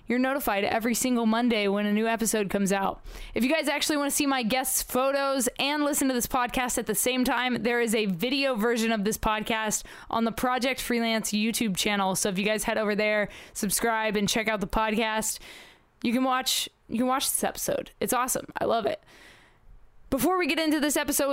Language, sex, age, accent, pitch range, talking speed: English, female, 20-39, American, 215-250 Hz, 215 wpm